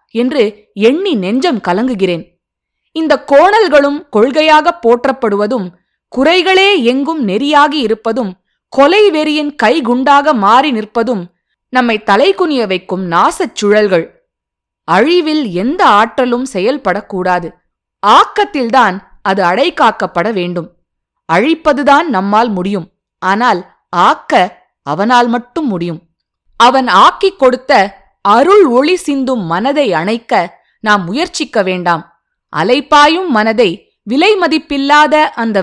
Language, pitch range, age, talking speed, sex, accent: Tamil, 200-295 Hz, 20-39, 90 wpm, female, native